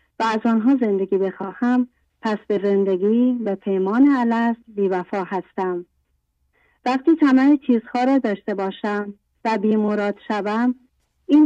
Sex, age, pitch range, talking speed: female, 40-59, 195-240 Hz, 120 wpm